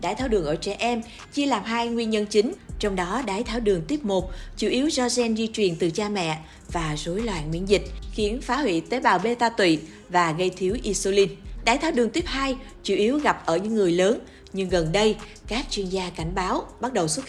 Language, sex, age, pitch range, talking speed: Vietnamese, female, 20-39, 185-245 Hz, 235 wpm